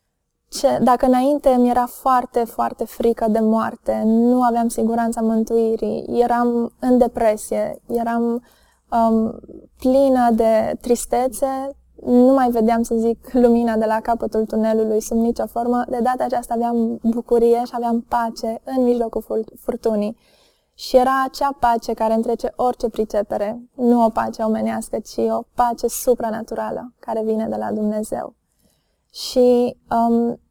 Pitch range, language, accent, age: 225-250 Hz, Romanian, native, 20-39